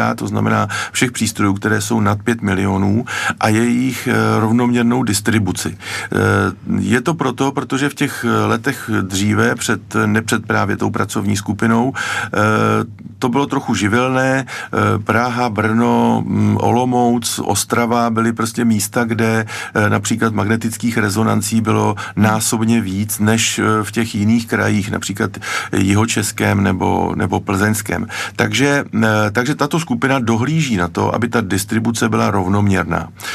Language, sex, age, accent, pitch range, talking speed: Czech, male, 50-69, native, 105-115 Hz, 120 wpm